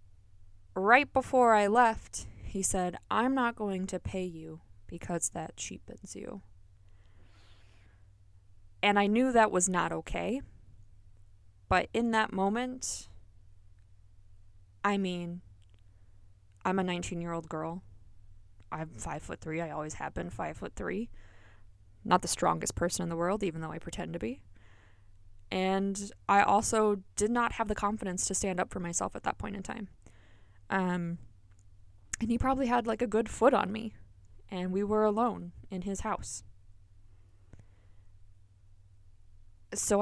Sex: female